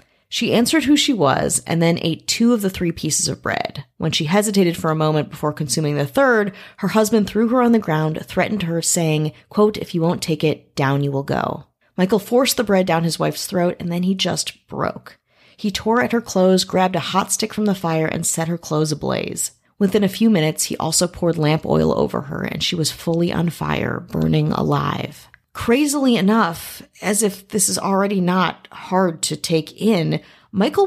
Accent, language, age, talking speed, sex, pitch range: American, English, 30-49, 210 wpm, female, 165-210 Hz